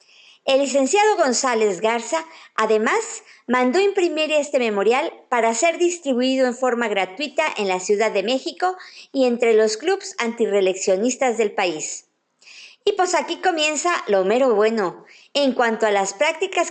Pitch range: 225-325 Hz